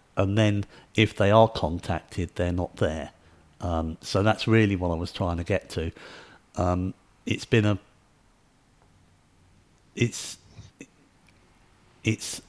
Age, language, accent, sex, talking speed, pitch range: 50-69, English, British, male, 125 wpm, 90-110 Hz